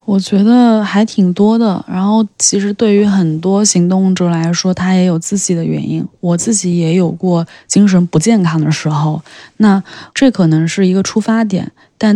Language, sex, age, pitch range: Chinese, female, 20-39, 165-195 Hz